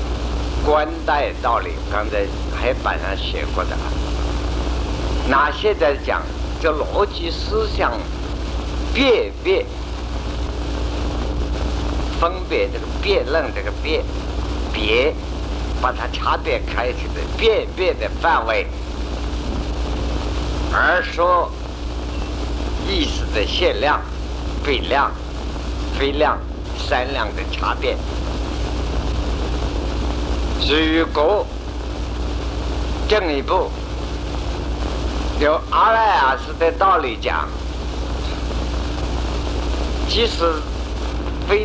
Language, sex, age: Chinese, male, 60-79